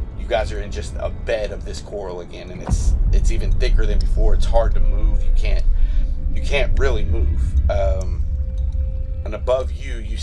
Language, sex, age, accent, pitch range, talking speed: English, male, 30-49, American, 75-100 Hz, 190 wpm